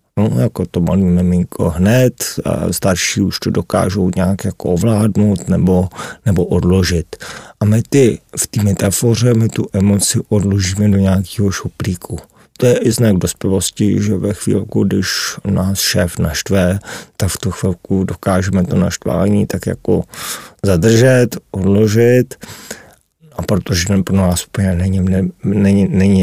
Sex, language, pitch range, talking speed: male, Czech, 90-105 Hz, 140 wpm